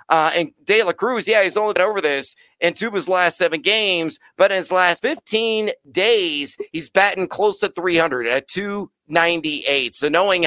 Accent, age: American, 40-59